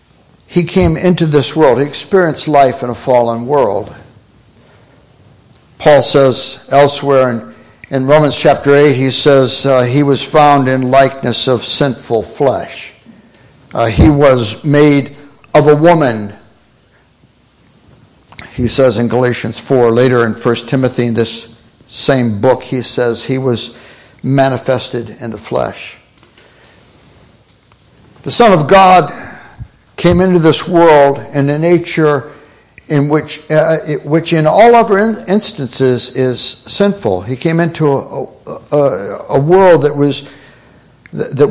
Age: 60-79